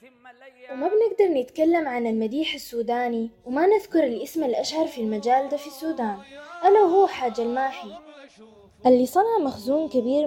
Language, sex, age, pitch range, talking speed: Arabic, female, 10-29, 225-300 Hz, 135 wpm